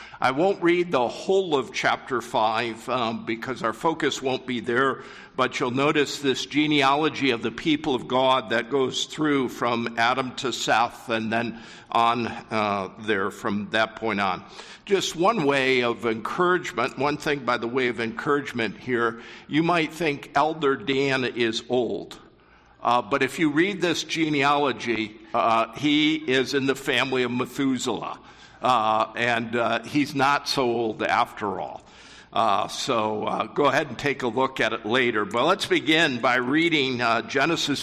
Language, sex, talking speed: English, male, 165 wpm